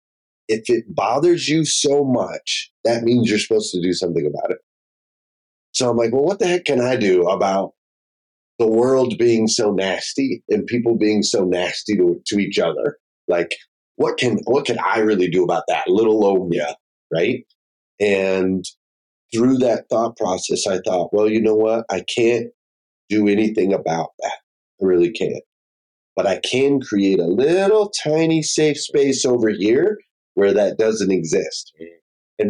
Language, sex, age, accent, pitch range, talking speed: English, male, 30-49, American, 90-120 Hz, 165 wpm